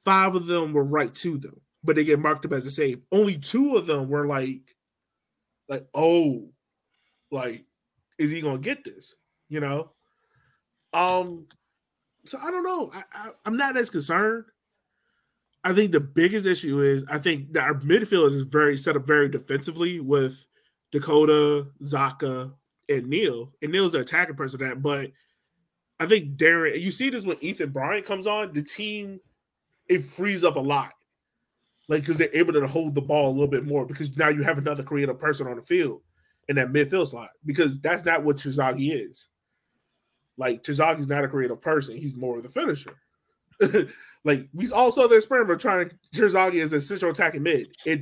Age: 20-39